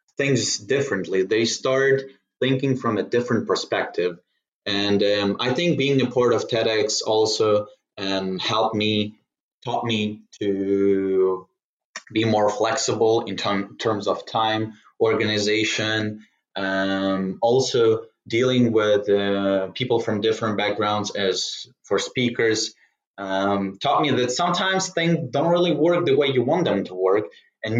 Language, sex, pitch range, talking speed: English, male, 110-160 Hz, 135 wpm